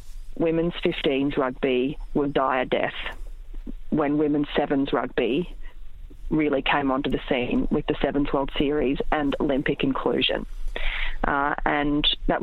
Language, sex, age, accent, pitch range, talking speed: English, female, 30-49, Australian, 145-155 Hz, 130 wpm